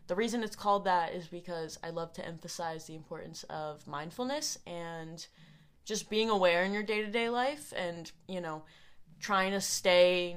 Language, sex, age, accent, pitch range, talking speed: English, female, 20-39, American, 165-210 Hz, 170 wpm